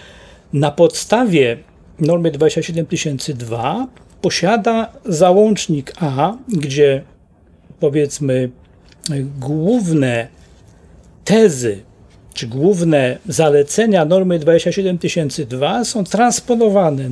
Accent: native